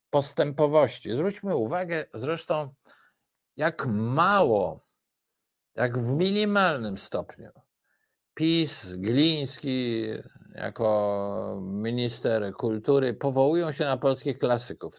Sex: male